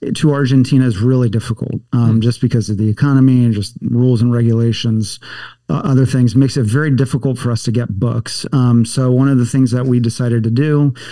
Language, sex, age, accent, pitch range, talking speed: English, male, 40-59, American, 120-135 Hz, 210 wpm